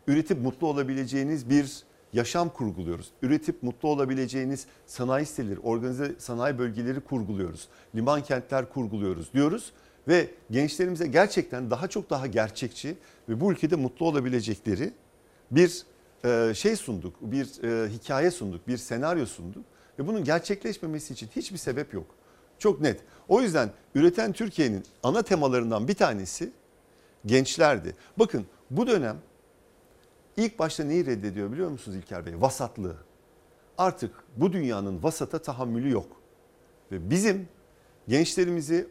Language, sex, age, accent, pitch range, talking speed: Turkish, male, 50-69, native, 115-160 Hz, 120 wpm